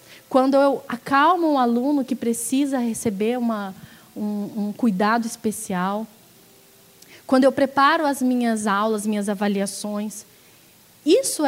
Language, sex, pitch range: Portuguese, female, 210-280 Hz